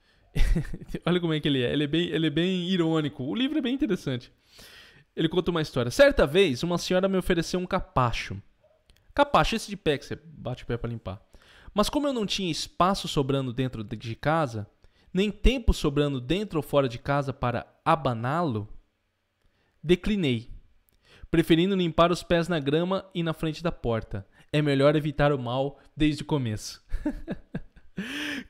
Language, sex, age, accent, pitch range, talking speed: Portuguese, male, 20-39, Brazilian, 130-185 Hz, 170 wpm